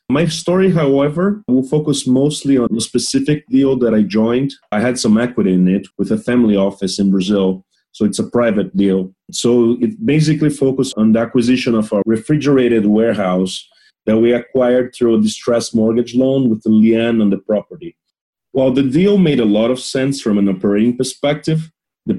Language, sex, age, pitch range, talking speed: English, male, 30-49, 105-130 Hz, 185 wpm